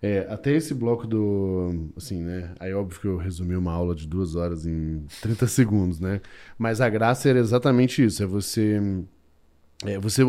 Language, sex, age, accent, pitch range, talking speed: Portuguese, male, 10-29, Brazilian, 100-130 Hz, 180 wpm